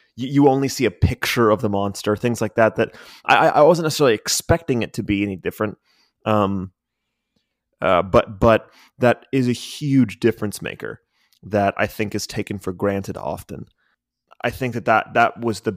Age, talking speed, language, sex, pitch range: 20-39, 180 wpm, English, male, 100-120 Hz